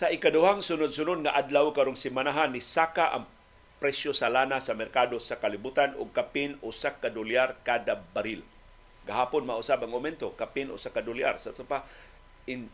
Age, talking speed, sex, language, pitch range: 50-69, 165 wpm, male, Filipino, 130-170 Hz